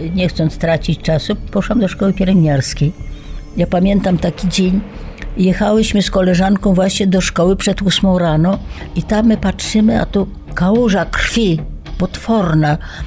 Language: Polish